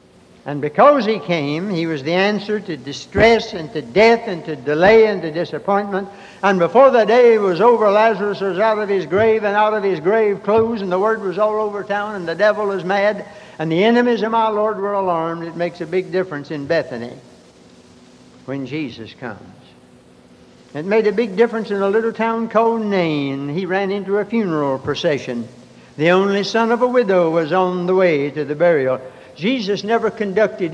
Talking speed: 195 wpm